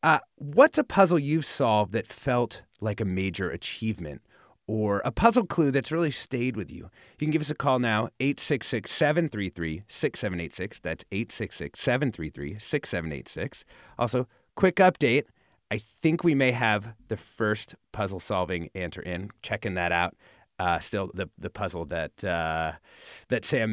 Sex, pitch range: male, 100-150 Hz